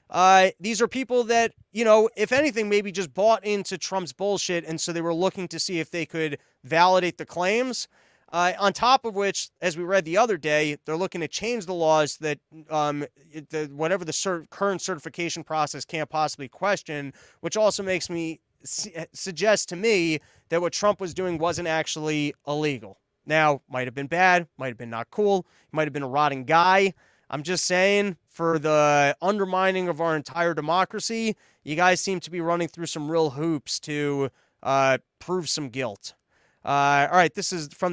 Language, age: English, 20-39